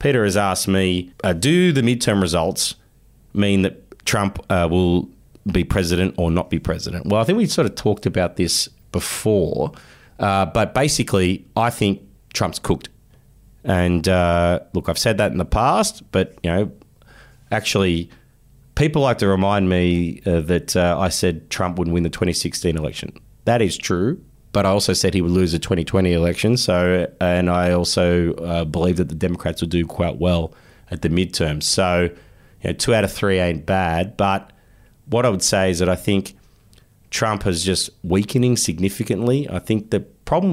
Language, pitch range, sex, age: English, 90-105 Hz, male, 30-49